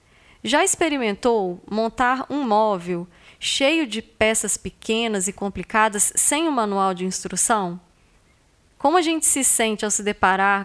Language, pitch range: Portuguese, 195-255 Hz